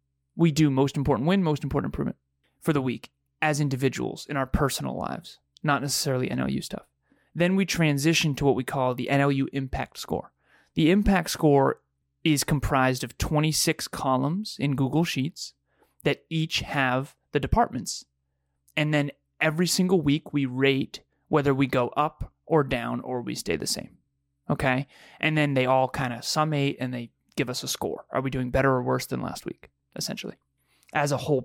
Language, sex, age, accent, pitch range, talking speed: English, male, 30-49, American, 125-155 Hz, 175 wpm